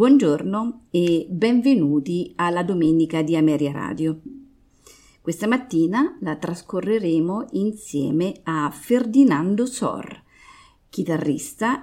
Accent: native